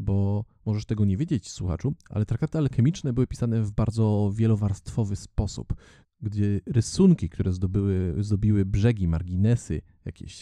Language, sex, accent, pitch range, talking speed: Polish, male, native, 90-110 Hz, 125 wpm